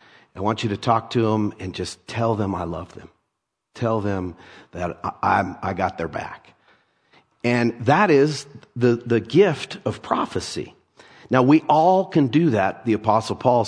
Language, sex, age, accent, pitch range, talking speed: English, male, 50-69, American, 110-150 Hz, 175 wpm